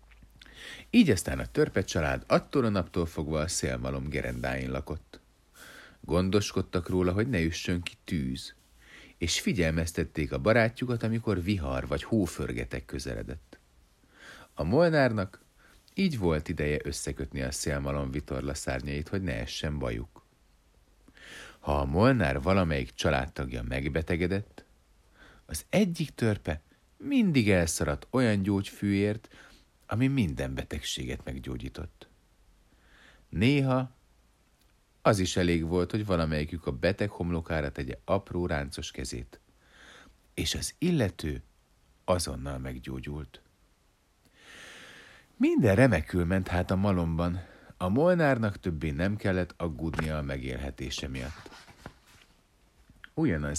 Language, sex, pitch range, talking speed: Hungarian, male, 70-100 Hz, 105 wpm